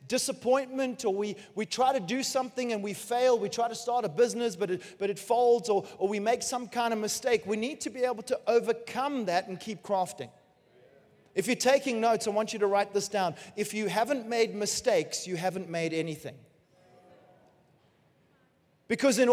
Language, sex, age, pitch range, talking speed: English, male, 30-49, 205-245 Hz, 195 wpm